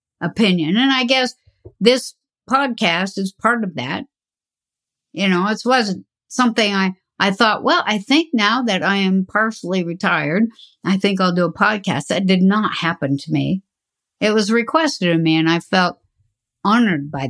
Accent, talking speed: American, 170 wpm